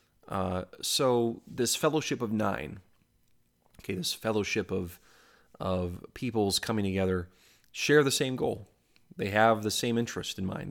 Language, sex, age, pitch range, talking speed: English, male, 30-49, 95-110 Hz, 140 wpm